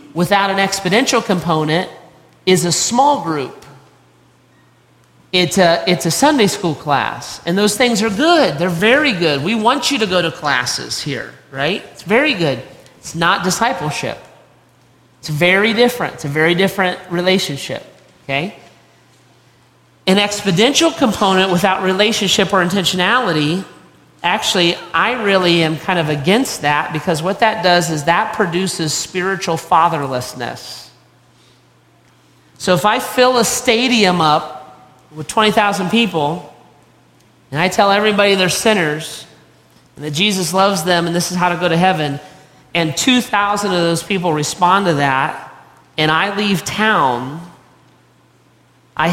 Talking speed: 140 wpm